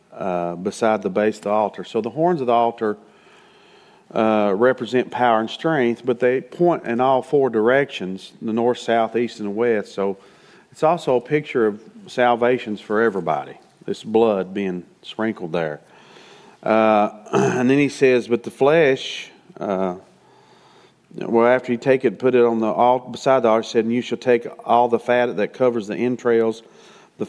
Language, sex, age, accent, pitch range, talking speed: English, male, 40-59, American, 105-125 Hz, 180 wpm